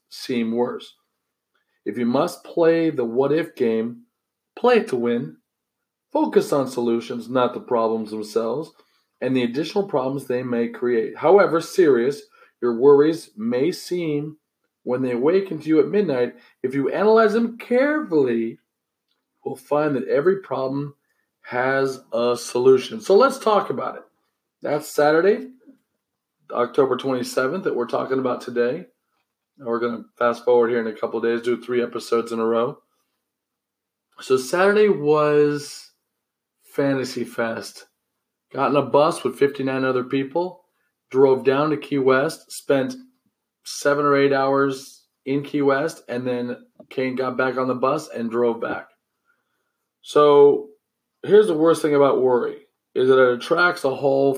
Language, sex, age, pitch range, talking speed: English, male, 40-59, 125-185 Hz, 150 wpm